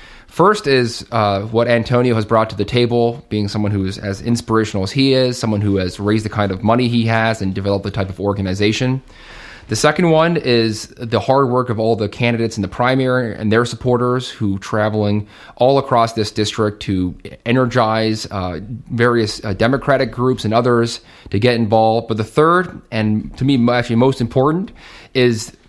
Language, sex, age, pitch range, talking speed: English, male, 30-49, 105-125 Hz, 185 wpm